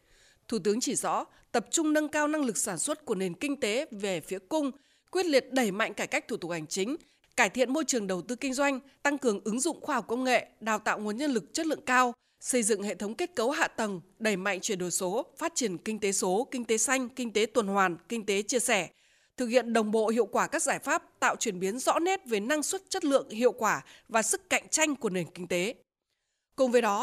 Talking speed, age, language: 255 wpm, 20-39, Vietnamese